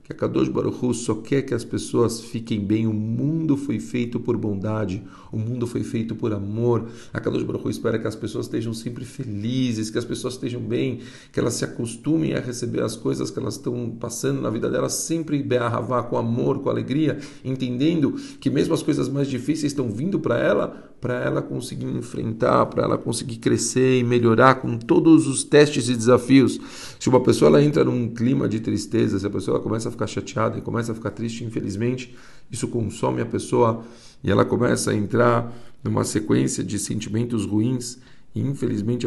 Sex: male